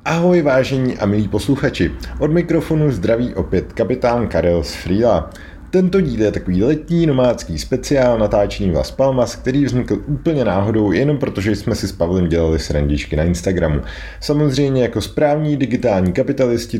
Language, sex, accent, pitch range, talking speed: Czech, male, native, 85-125 Hz, 145 wpm